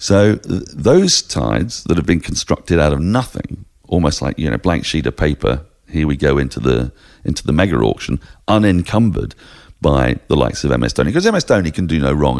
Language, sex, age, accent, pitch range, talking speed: English, male, 40-59, British, 70-95 Hz, 200 wpm